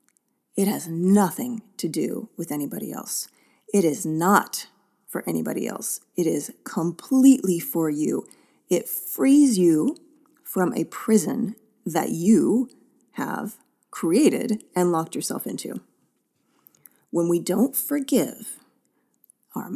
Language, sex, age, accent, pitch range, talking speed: English, female, 30-49, American, 170-245 Hz, 115 wpm